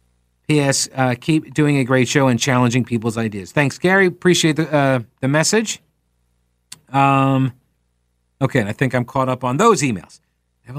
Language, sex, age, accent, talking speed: English, male, 50-69, American, 165 wpm